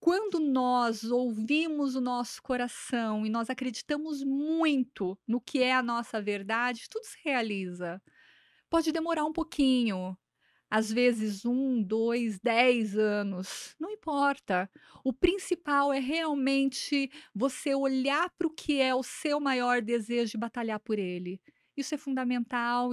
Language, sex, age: Portuguese, female, 30-49